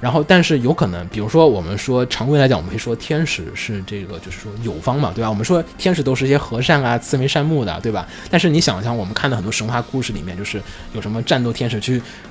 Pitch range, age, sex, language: 100-145 Hz, 20-39, male, Chinese